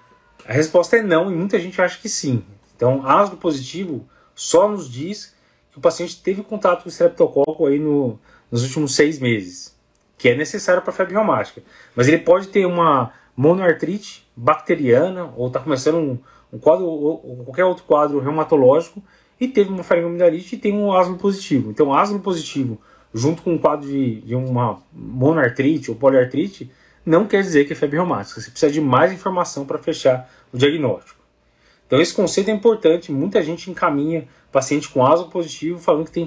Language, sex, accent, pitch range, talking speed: Portuguese, male, Brazilian, 135-180 Hz, 180 wpm